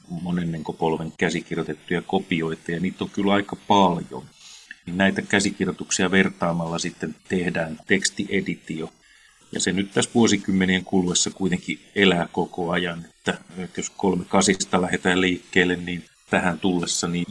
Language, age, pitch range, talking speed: Finnish, 30-49, 85-95 Hz, 125 wpm